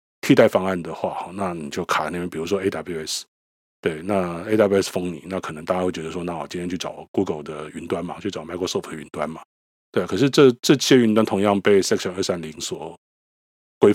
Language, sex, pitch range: Chinese, male, 80-100 Hz